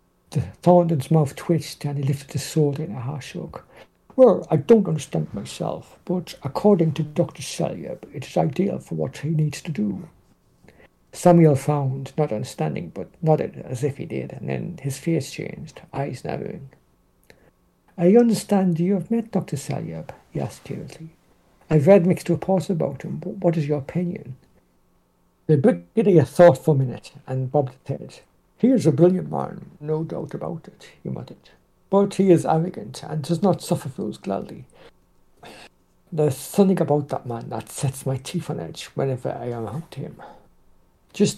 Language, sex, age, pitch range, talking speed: English, male, 60-79, 140-175 Hz, 170 wpm